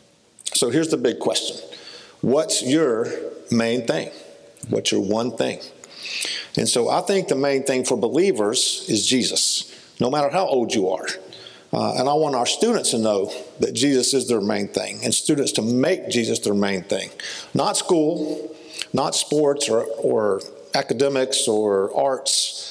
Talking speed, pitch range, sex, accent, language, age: 160 wpm, 120-170 Hz, male, American, English, 50-69